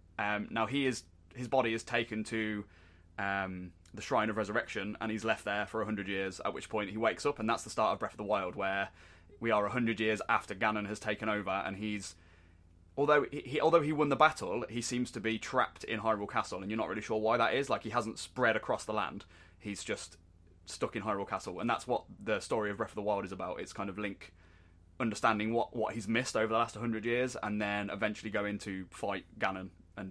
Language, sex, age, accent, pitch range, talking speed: English, male, 20-39, British, 95-115 Hz, 240 wpm